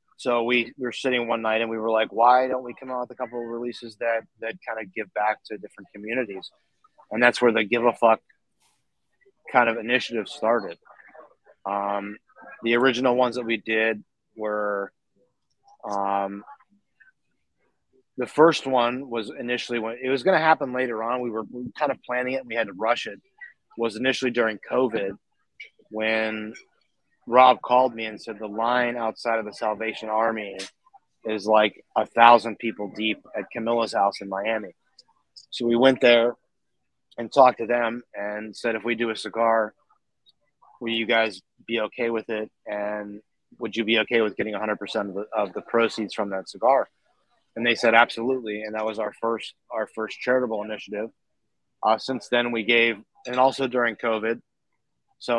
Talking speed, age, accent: 175 wpm, 30-49, American